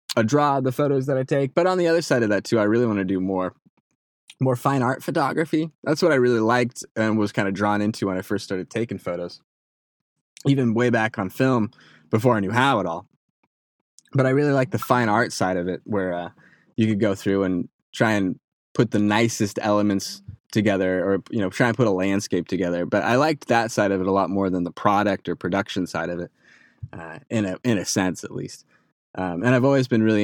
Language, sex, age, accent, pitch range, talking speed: English, male, 20-39, American, 95-125 Hz, 235 wpm